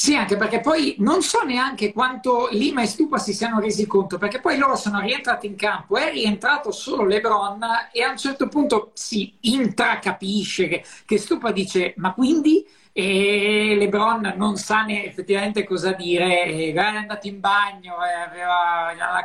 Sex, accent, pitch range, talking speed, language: male, native, 175-210 Hz, 160 wpm, Italian